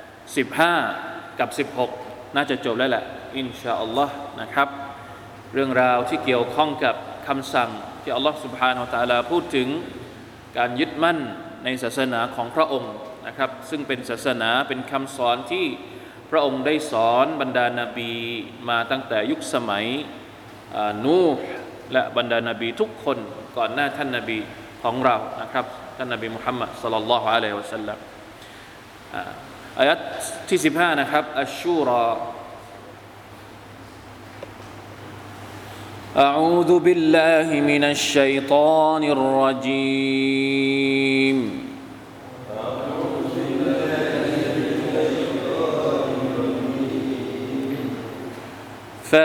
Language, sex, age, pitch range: Thai, male, 20-39, 120-150 Hz